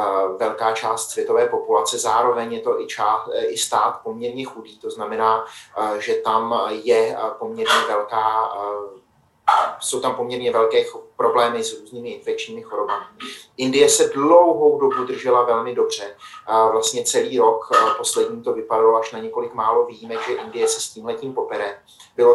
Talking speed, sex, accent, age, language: 150 wpm, male, native, 30-49, Czech